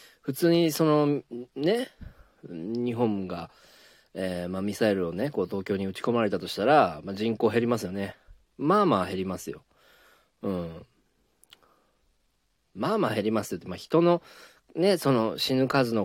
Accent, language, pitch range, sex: native, Japanese, 90-130 Hz, male